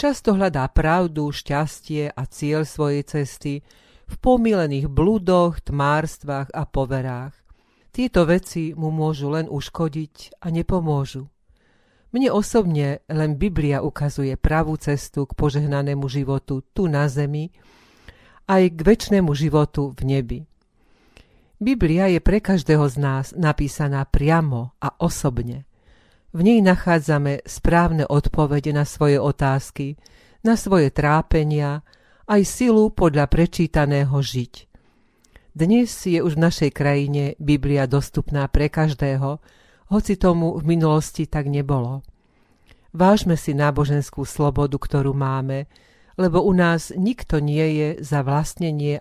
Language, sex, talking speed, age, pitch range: Slovak, female, 120 wpm, 40-59, 140-170 Hz